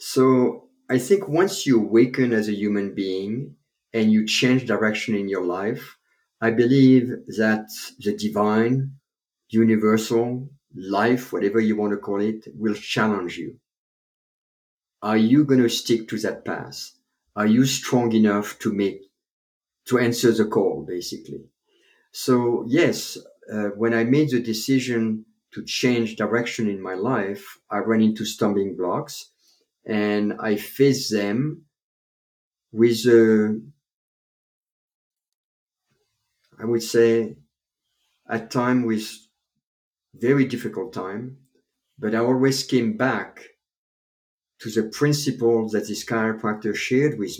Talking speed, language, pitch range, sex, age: 125 wpm, English, 105-125 Hz, male, 50-69